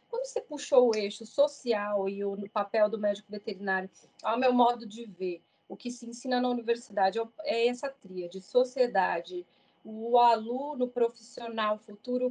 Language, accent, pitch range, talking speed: Portuguese, Brazilian, 210-275 Hz, 155 wpm